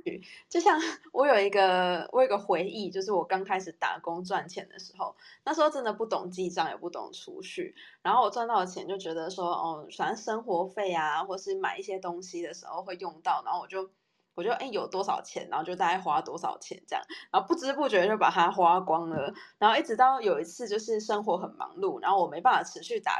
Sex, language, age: female, Chinese, 20-39